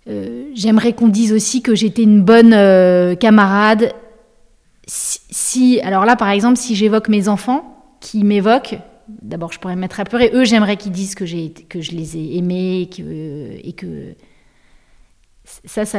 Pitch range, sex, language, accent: 195-235 Hz, female, French, French